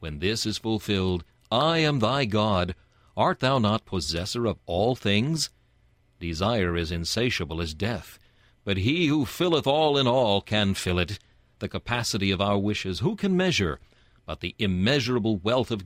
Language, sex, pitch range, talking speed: English, male, 90-125 Hz, 165 wpm